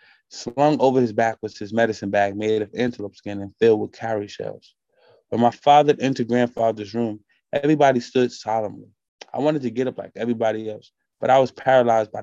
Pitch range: 105-125 Hz